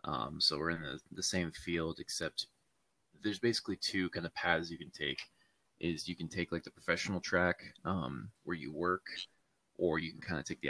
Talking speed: 210 wpm